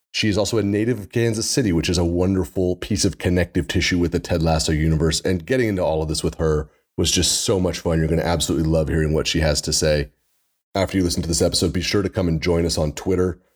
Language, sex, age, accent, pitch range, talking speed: English, male, 30-49, American, 80-95 Hz, 265 wpm